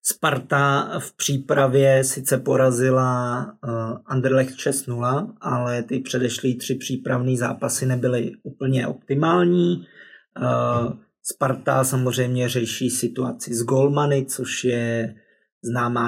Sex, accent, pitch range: male, native, 125-145 Hz